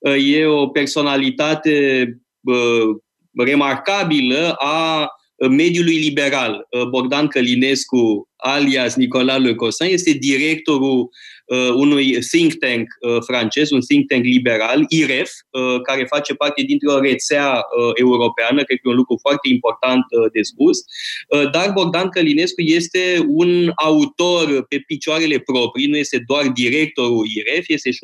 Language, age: Romanian, 20-39